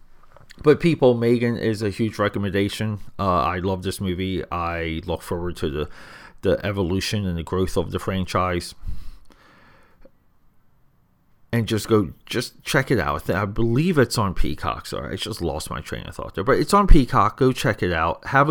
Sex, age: male, 30-49